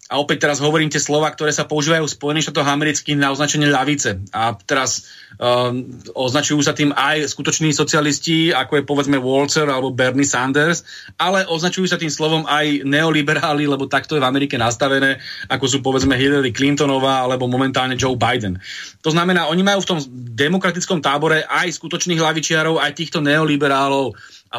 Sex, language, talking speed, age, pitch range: male, Slovak, 170 wpm, 30-49, 130-155 Hz